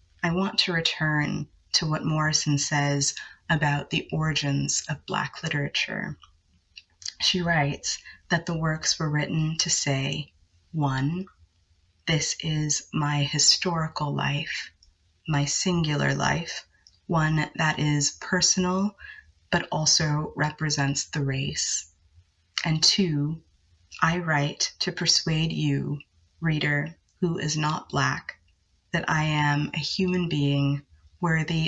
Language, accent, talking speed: English, American, 115 wpm